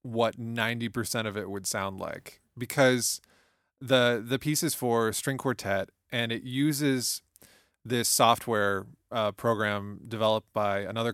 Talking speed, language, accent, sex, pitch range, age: 140 wpm, English, American, male, 105-125 Hz, 20-39